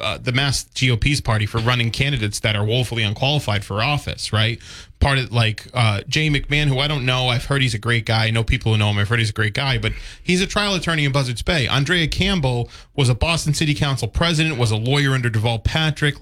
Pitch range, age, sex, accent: 110-145 Hz, 30-49, male, American